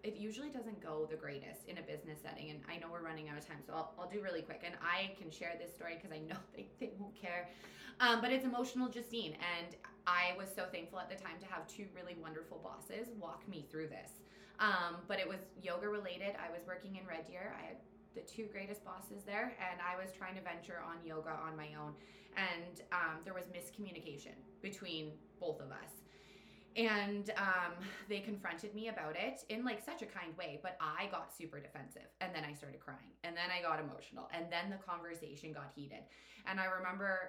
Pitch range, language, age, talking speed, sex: 160-200 Hz, English, 20-39, 220 wpm, female